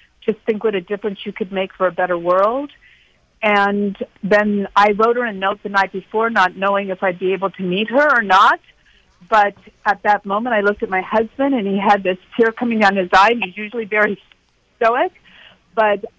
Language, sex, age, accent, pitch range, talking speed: English, female, 50-69, American, 195-225 Hz, 210 wpm